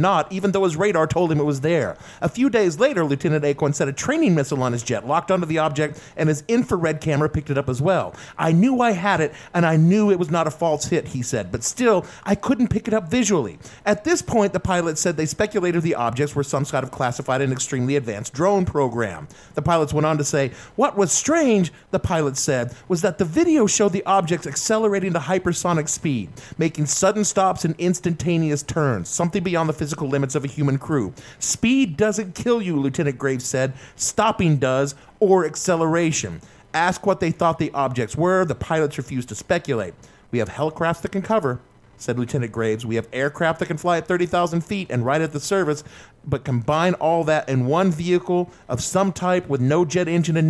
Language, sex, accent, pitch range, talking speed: English, male, American, 140-185 Hz, 215 wpm